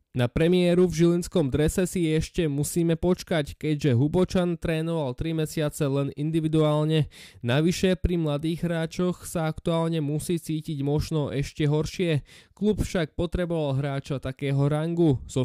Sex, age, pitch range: male, 20-39, 140-165 Hz